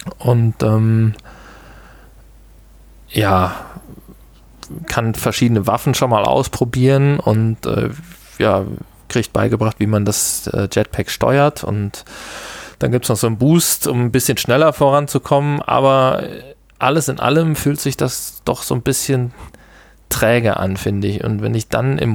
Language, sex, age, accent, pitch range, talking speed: German, male, 20-39, German, 110-135 Hz, 145 wpm